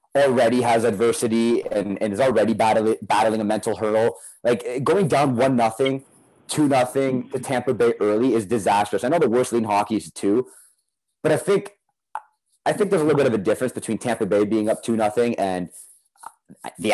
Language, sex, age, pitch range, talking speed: English, male, 30-49, 110-140 Hz, 190 wpm